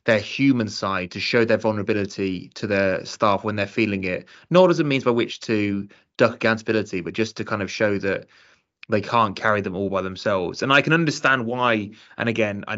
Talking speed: 215 wpm